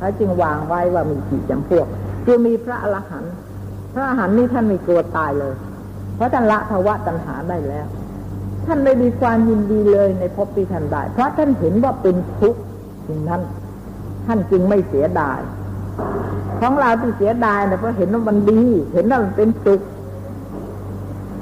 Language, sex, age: Thai, female, 60-79